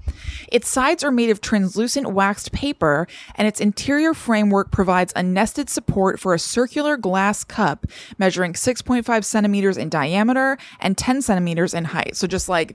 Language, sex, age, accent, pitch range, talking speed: English, female, 20-39, American, 185-245 Hz, 160 wpm